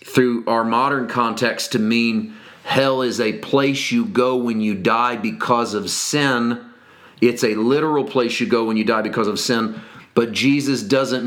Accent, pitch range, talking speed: American, 115-135 Hz, 175 wpm